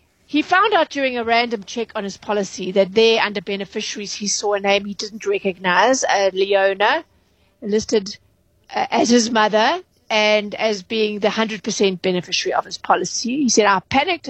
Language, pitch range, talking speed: English, 205-245 Hz, 170 wpm